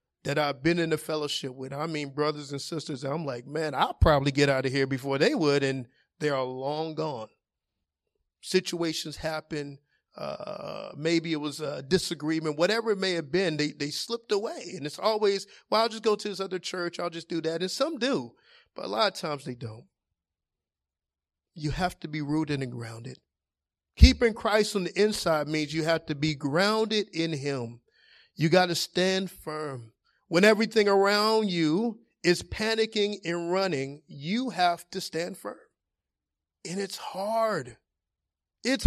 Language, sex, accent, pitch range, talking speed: English, male, American, 145-200 Hz, 175 wpm